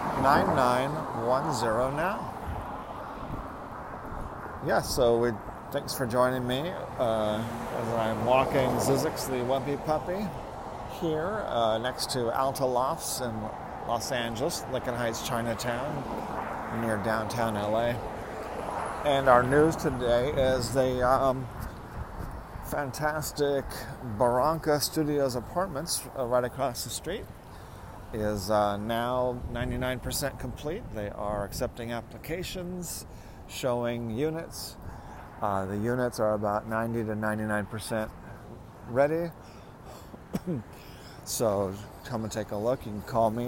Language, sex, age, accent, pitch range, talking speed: English, male, 40-59, American, 110-130 Hz, 110 wpm